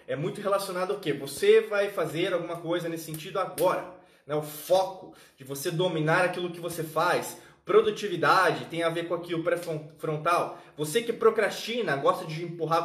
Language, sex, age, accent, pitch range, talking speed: Portuguese, male, 20-39, Brazilian, 165-225 Hz, 175 wpm